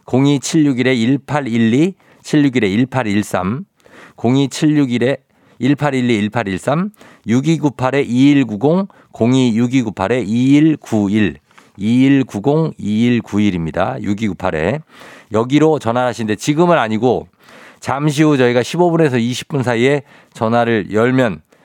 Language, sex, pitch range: Korean, male, 105-150 Hz